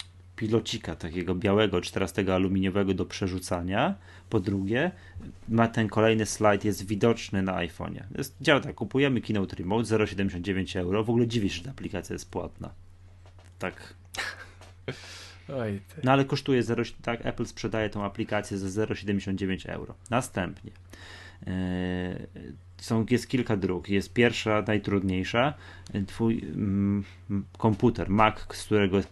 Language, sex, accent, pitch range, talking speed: Polish, male, native, 90-110 Hz, 125 wpm